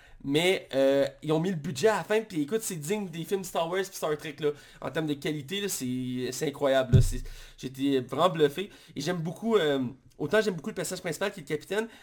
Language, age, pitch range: French, 30-49, 150-205 Hz